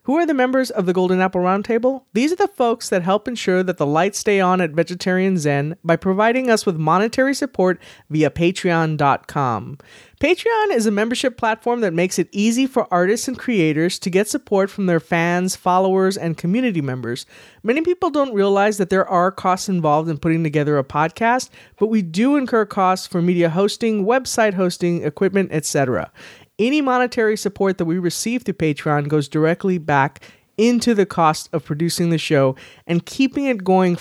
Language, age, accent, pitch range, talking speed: English, 30-49, American, 160-230 Hz, 180 wpm